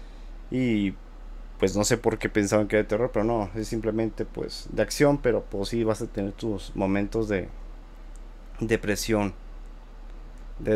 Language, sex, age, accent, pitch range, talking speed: Spanish, male, 30-49, Mexican, 100-130 Hz, 160 wpm